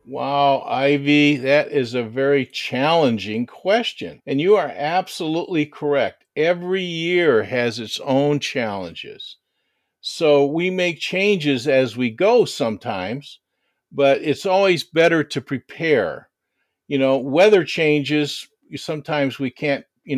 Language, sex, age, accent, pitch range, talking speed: English, male, 50-69, American, 135-185 Hz, 120 wpm